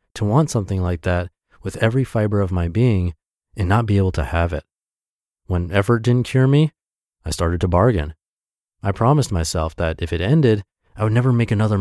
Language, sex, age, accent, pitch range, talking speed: English, male, 30-49, American, 90-120 Hz, 200 wpm